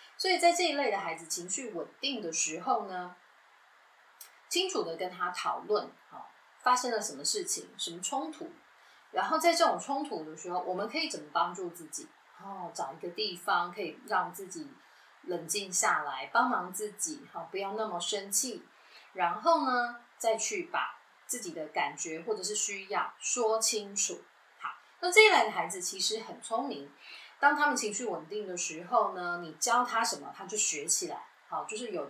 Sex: female